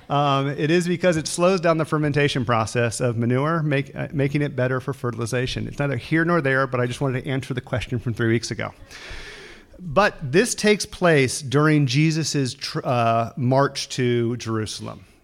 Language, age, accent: English, 40-59, American